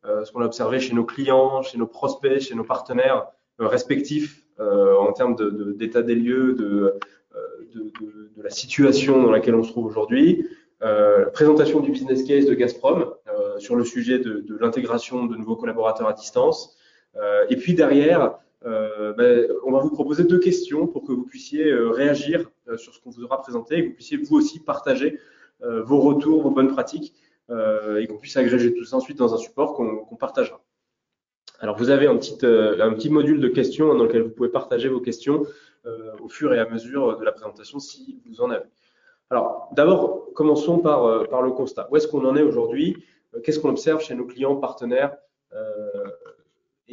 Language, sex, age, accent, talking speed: French, male, 20-39, French, 205 wpm